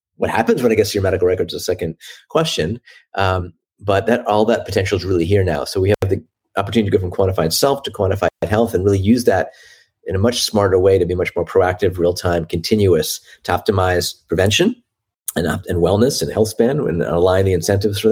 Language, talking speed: English, 225 wpm